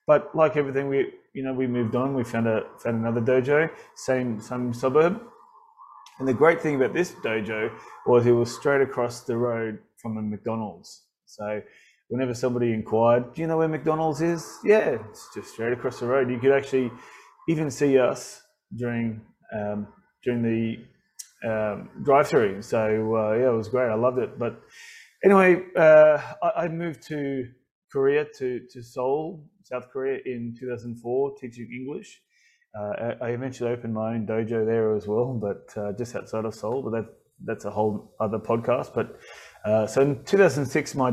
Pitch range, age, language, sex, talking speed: 110-140 Hz, 20-39, English, male, 175 wpm